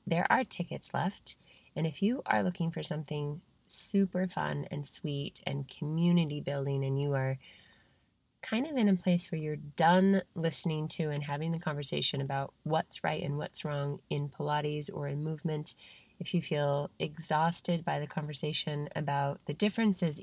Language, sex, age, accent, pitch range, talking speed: English, female, 20-39, American, 145-175 Hz, 165 wpm